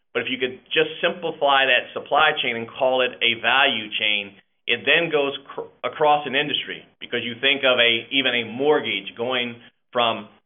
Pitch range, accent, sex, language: 120-140 Hz, American, male, English